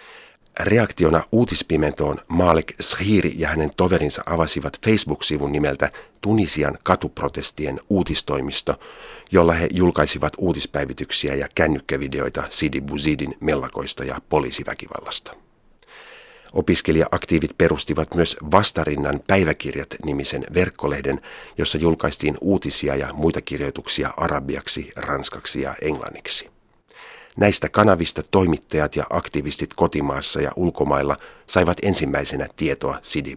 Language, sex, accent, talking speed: Finnish, male, native, 95 wpm